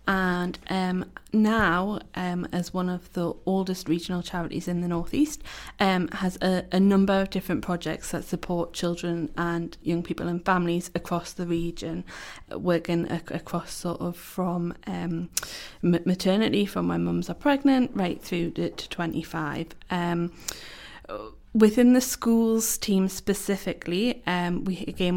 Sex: female